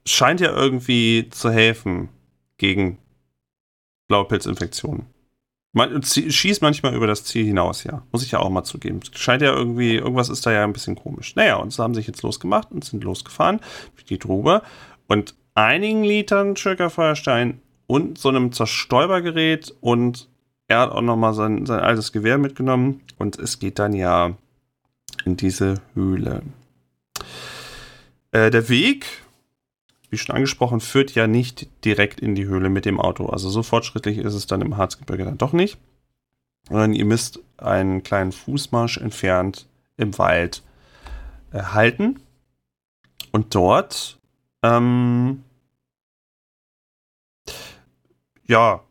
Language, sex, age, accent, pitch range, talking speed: German, male, 30-49, German, 100-130 Hz, 140 wpm